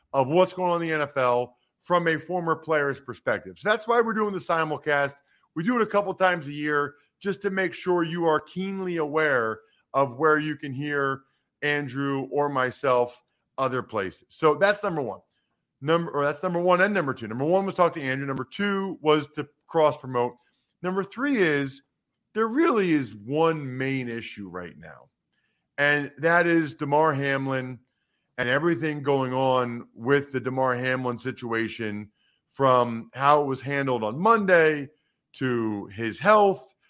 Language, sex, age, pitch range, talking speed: English, male, 40-59, 130-175 Hz, 165 wpm